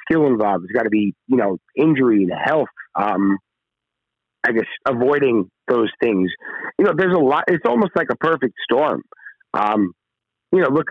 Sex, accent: male, American